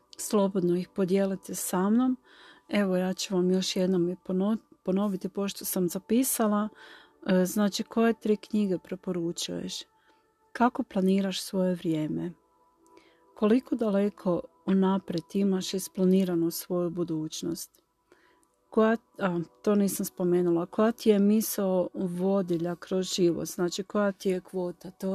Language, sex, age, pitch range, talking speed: Croatian, female, 40-59, 185-215 Hz, 120 wpm